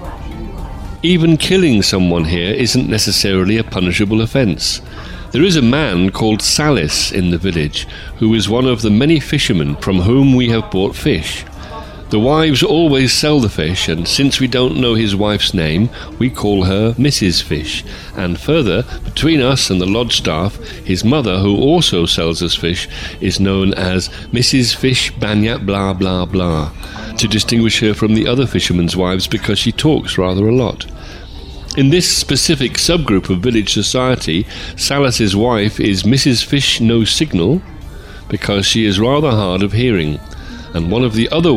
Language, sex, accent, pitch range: English, male, British, 90-120 Hz